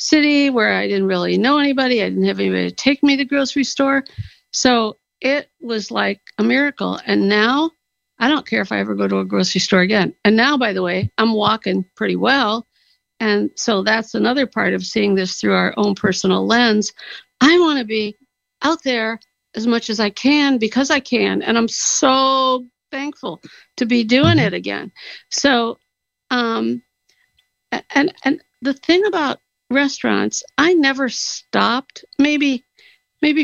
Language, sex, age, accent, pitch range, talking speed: English, female, 50-69, American, 190-270 Hz, 170 wpm